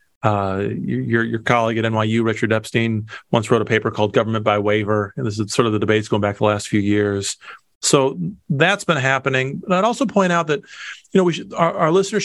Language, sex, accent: English, male, American